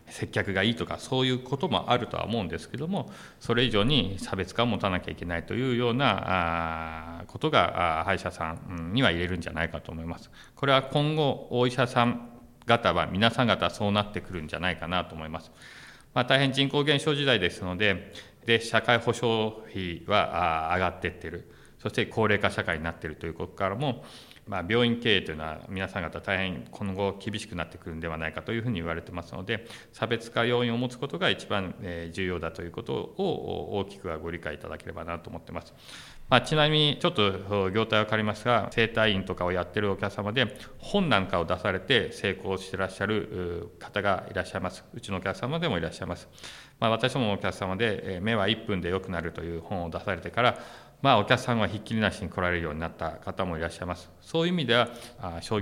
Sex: male